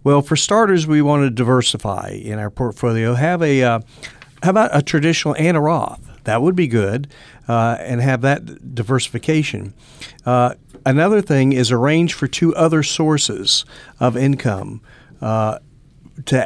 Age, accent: 50-69, American